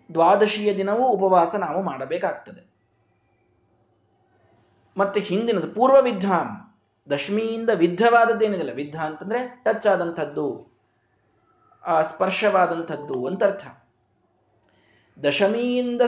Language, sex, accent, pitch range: Kannada, male, native, 145-215 Hz